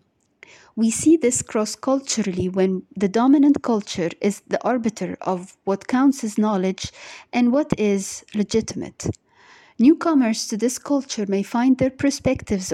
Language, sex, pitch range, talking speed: English, female, 195-250 Hz, 130 wpm